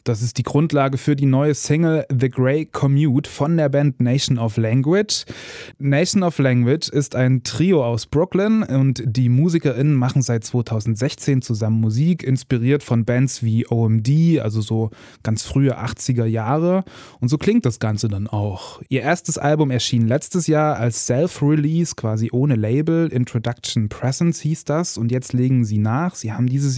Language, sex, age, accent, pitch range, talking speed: German, male, 20-39, German, 120-155 Hz, 165 wpm